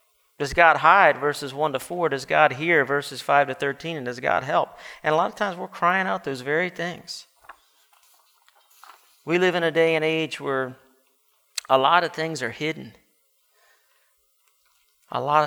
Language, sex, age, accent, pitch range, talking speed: English, male, 50-69, American, 135-165 Hz, 175 wpm